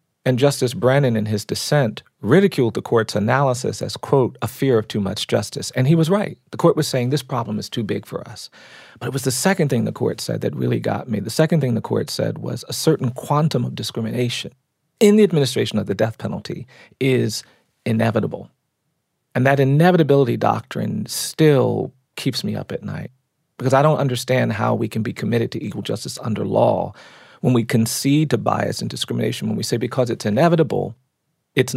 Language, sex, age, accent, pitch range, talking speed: English, male, 40-59, American, 115-145 Hz, 200 wpm